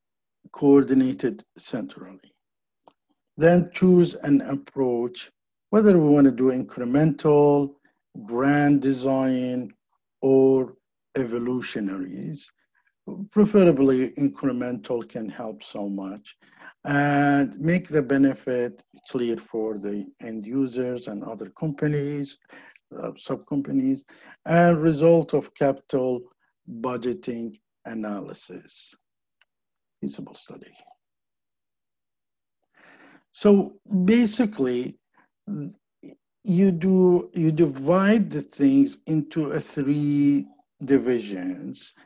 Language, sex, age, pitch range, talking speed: English, male, 50-69, 125-160 Hz, 75 wpm